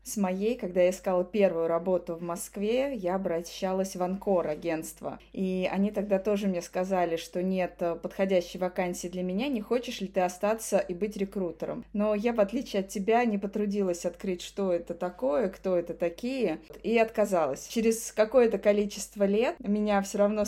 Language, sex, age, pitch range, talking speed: Russian, female, 20-39, 180-210 Hz, 170 wpm